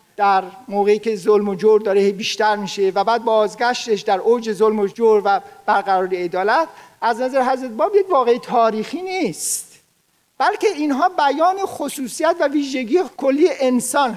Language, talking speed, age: Persian, 155 wpm, 50-69